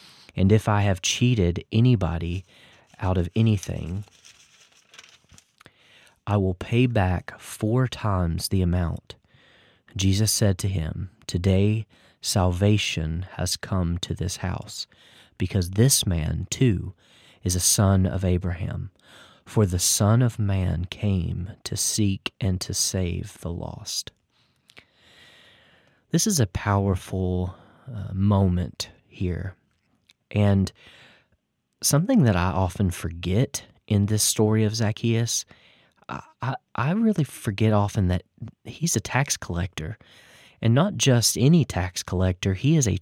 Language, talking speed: English, 125 wpm